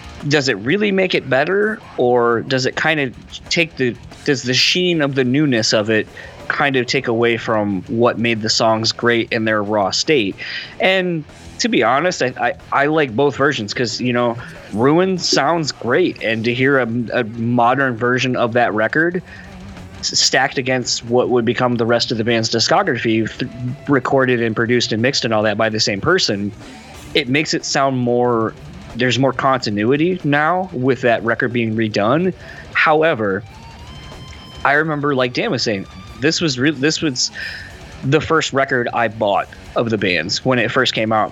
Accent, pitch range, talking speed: American, 110-140 Hz, 180 wpm